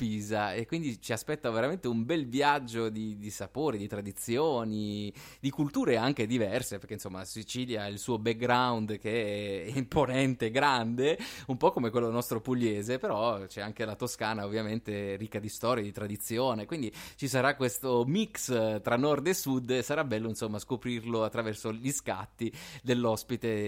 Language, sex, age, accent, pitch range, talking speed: Italian, male, 20-39, native, 110-140 Hz, 160 wpm